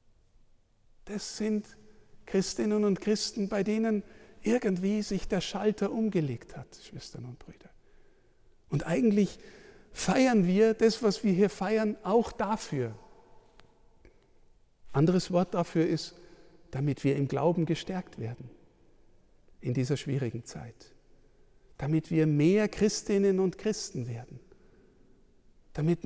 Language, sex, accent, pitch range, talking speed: German, male, German, 130-200 Hz, 115 wpm